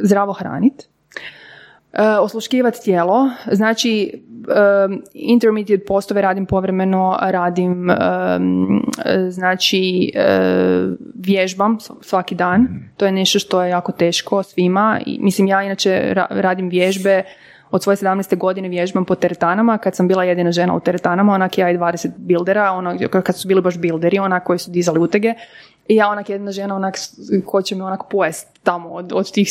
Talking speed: 155 wpm